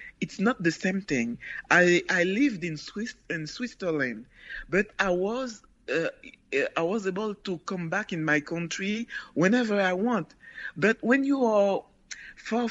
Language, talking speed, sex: English, 155 wpm, male